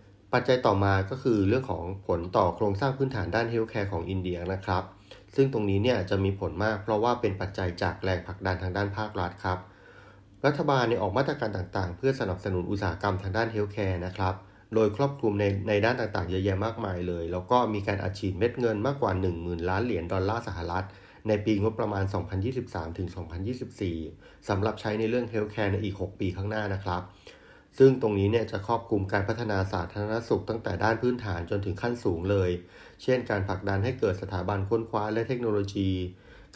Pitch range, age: 95-110 Hz, 30-49